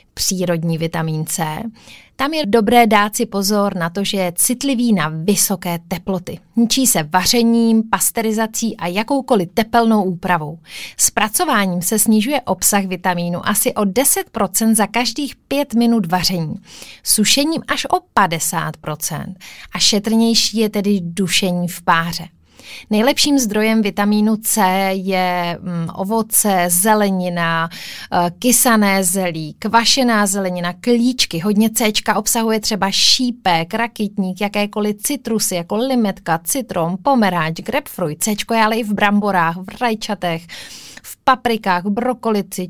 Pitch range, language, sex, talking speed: 180-230 Hz, Czech, female, 120 wpm